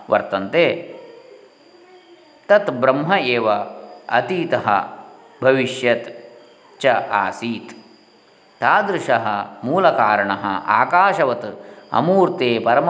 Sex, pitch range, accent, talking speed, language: male, 125-195 Hz, Indian, 65 wpm, English